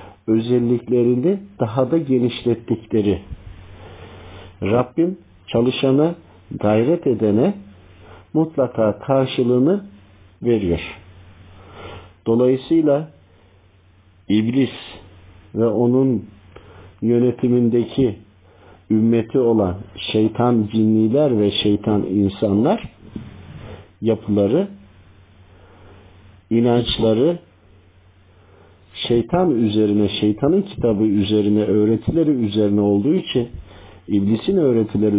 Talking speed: 60 wpm